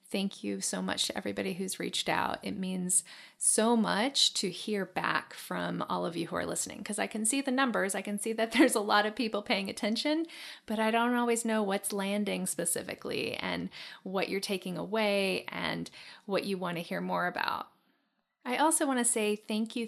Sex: female